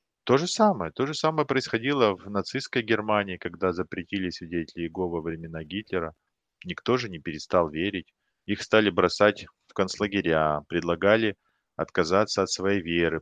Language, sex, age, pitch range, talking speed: Russian, male, 30-49, 80-105 Hz, 145 wpm